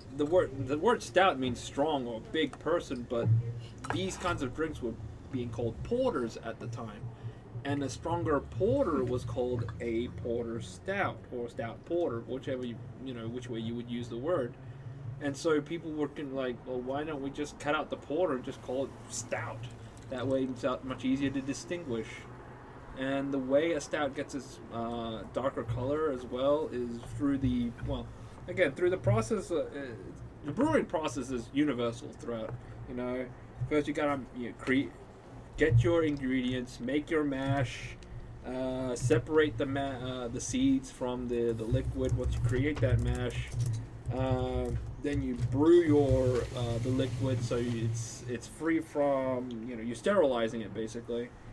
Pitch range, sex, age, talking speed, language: 120-140 Hz, male, 20-39, 170 wpm, English